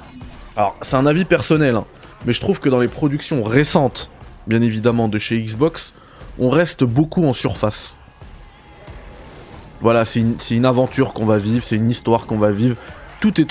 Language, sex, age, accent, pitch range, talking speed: French, male, 20-39, French, 110-145 Hz, 180 wpm